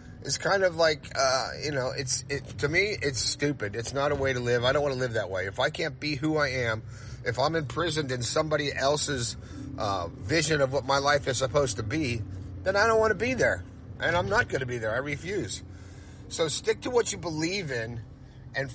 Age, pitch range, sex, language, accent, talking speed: 30-49, 110-155 Hz, male, English, American, 235 wpm